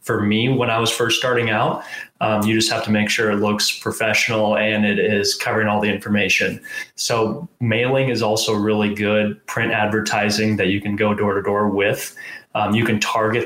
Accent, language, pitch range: American, English, 105-115 Hz